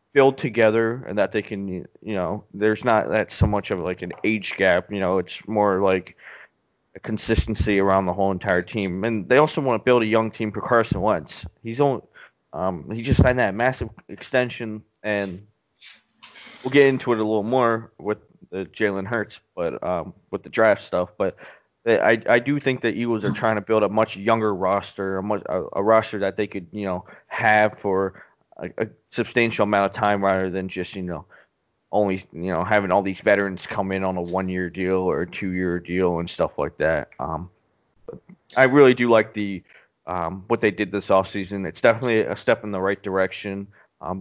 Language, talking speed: English, 205 wpm